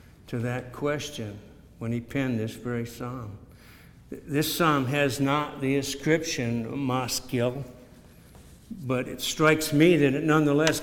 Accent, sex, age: American, male, 60-79